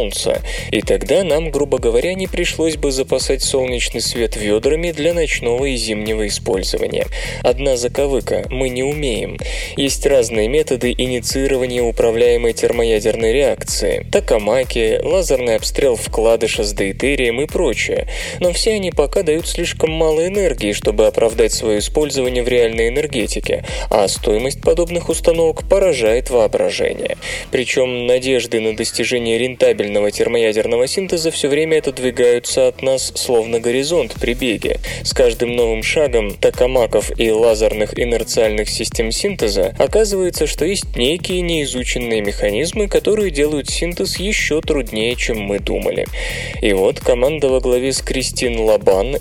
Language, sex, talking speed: Russian, male, 130 wpm